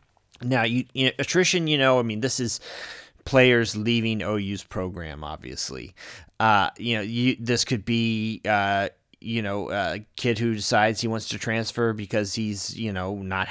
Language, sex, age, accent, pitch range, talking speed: English, male, 30-49, American, 95-115 Hz, 165 wpm